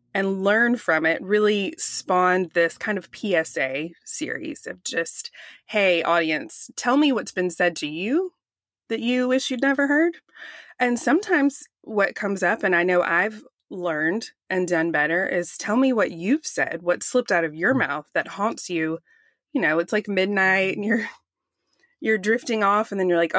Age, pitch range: 20-39, 175-230 Hz